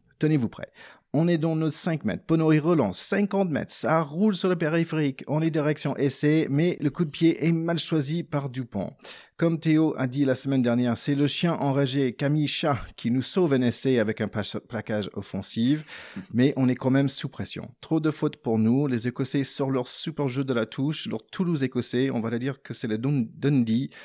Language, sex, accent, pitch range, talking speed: French, male, French, 115-155 Hz, 205 wpm